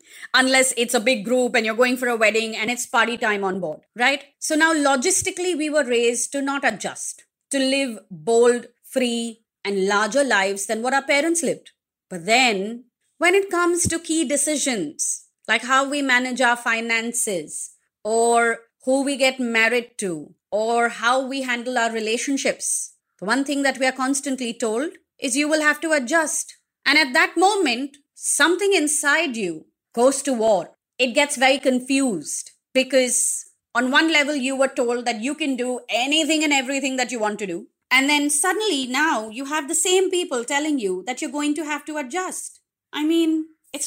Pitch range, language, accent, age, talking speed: 230-305 Hz, English, Indian, 30-49, 180 wpm